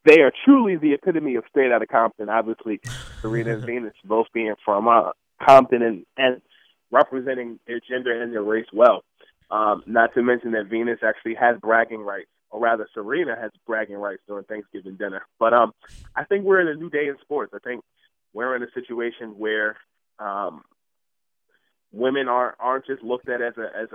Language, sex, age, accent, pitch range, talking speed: English, male, 20-39, American, 105-120 Hz, 190 wpm